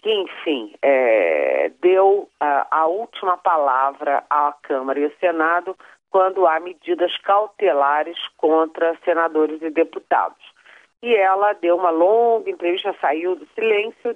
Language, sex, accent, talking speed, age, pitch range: Portuguese, female, Brazilian, 125 wpm, 40-59, 160-215 Hz